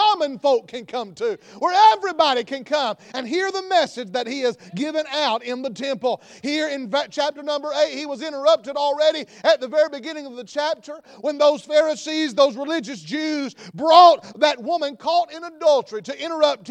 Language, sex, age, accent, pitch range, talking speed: English, male, 40-59, American, 265-320 Hz, 185 wpm